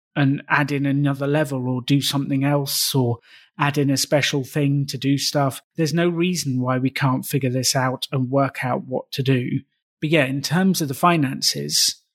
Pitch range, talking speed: 135-160 Hz, 200 wpm